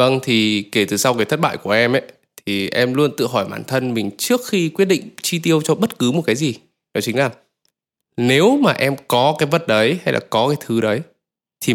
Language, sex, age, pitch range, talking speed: Vietnamese, male, 20-39, 120-165 Hz, 245 wpm